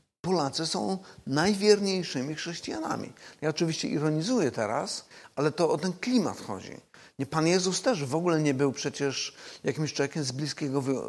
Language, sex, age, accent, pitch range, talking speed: Polish, male, 50-69, native, 135-170 Hz, 145 wpm